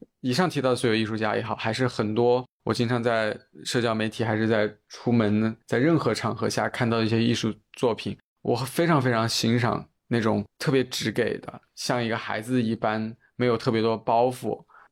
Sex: male